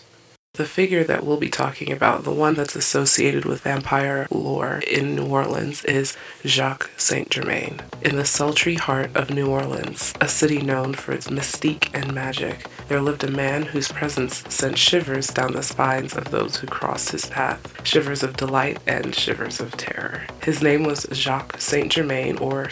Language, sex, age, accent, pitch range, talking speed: English, female, 30-49, American, 135-150 Hz, 175 wpm